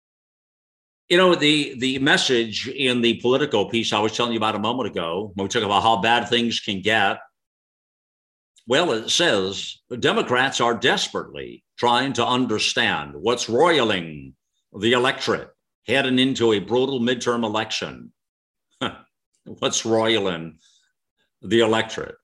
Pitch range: 105-130 Hz